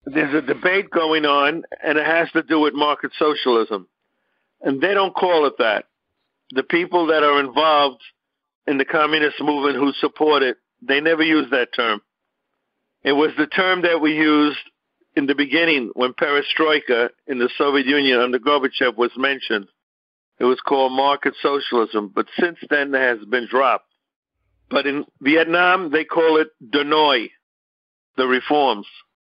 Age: 50-69